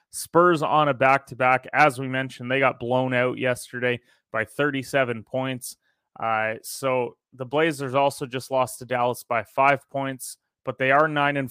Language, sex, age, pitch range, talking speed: English, male, 30-49, 120-140 Hz, 165 wpm